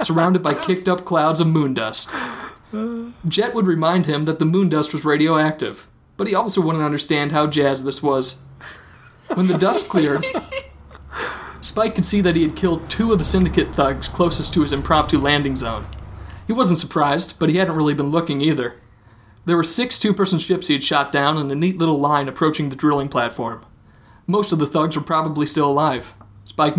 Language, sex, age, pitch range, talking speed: English, male, 30-49, 135-165 Hz, 195 wpm